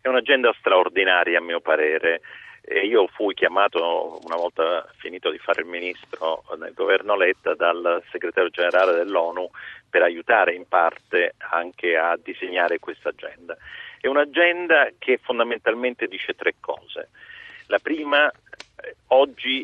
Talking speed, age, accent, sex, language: 130 wpm, 50-69, native, male, Italian